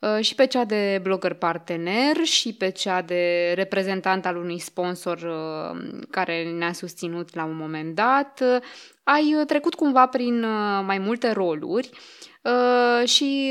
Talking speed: 125 wpm